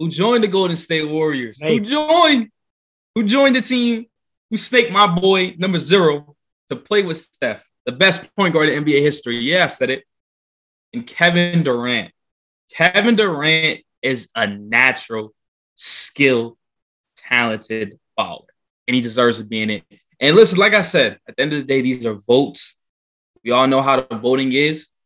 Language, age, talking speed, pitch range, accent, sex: English, 20-39, 170 wpm, 105-155 Hz, American, male